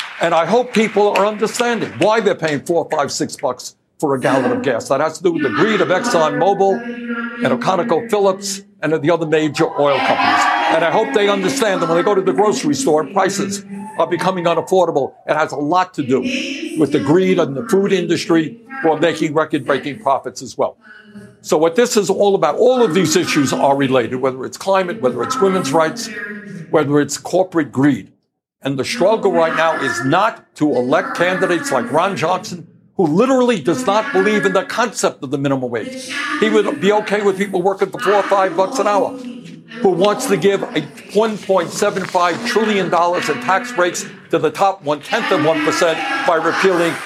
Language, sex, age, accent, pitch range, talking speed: English, male, 60-79, American, 165-220 Hz, 195 wpm